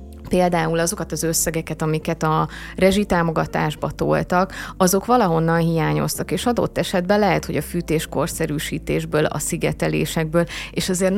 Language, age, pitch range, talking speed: Hungarian, 30-49, 160-180 Hz, 120 wpm